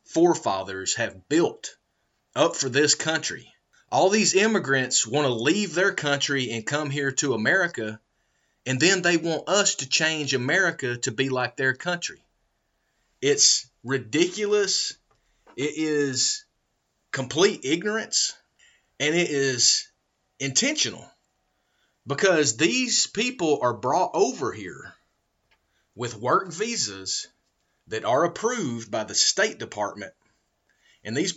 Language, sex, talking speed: English, male, 120 wpm